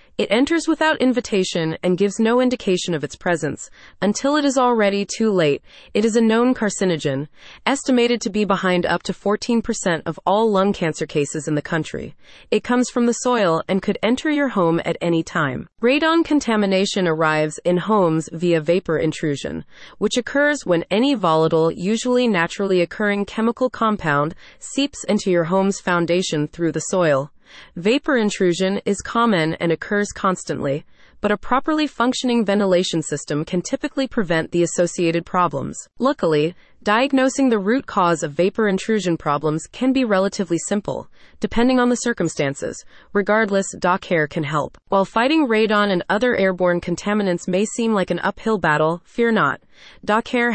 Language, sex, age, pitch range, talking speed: English, female, 30-49, 170-235 Hz, 160 wpm